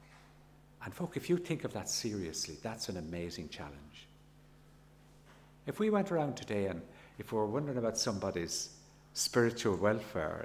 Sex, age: male, 60-79